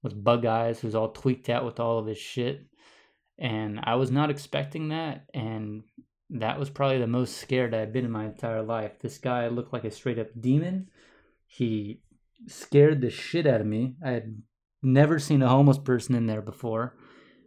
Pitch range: 110-130 Hz